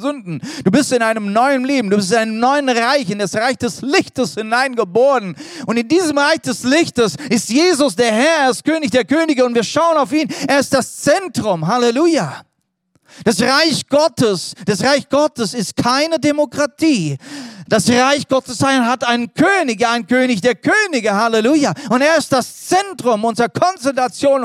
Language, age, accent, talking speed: German, 40-59, German, 170 wpm